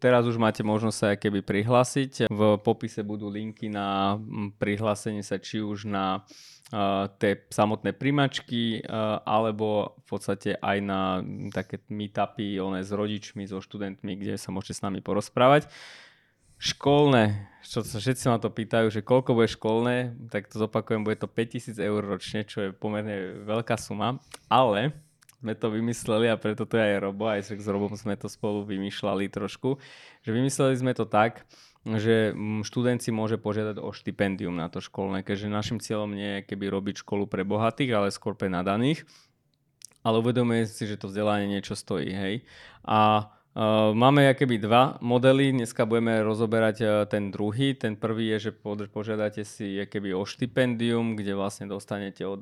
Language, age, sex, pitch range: Slovak, 20-39, male, 100-115 Hz